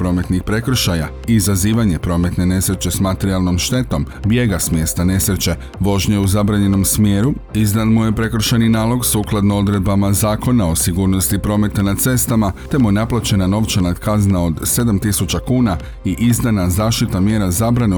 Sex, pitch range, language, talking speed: male, 90-110 Hz, Croatian, 145 wpm